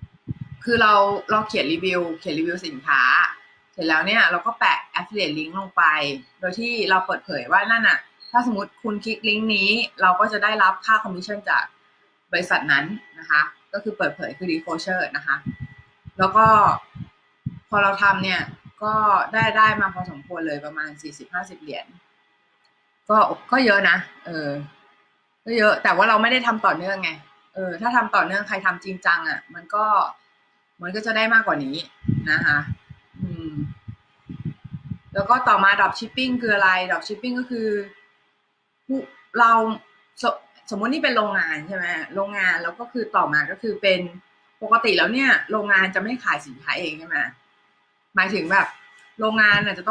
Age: 20-39